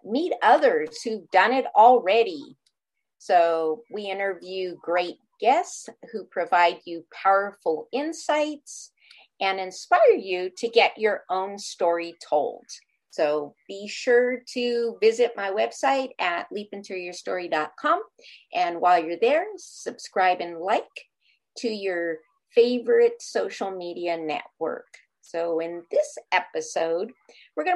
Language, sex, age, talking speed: English, female, 50-69, 115 wpm